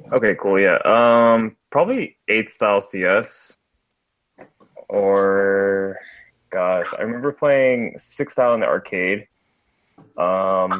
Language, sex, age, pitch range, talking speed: English, male, 20-39, 90-115 Hz, 105 wpm